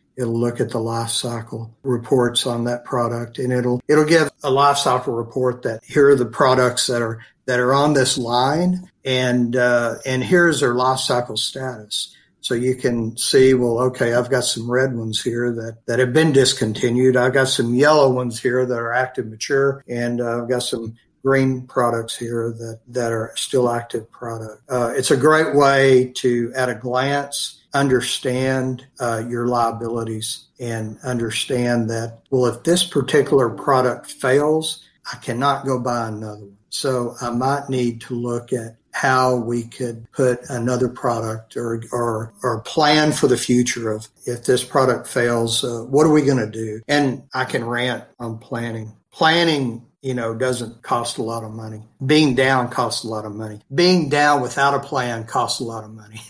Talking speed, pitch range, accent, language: 180 wpm, 115-130 Hz, American, English